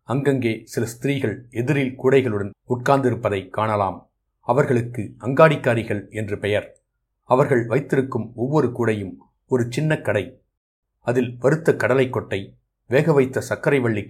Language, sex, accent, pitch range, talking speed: Tamil, male, native, 105-130 Hz, 100 wpm